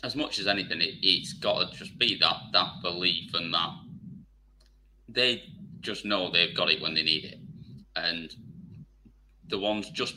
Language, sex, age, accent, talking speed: English, male, 30-49, British, 170 wpm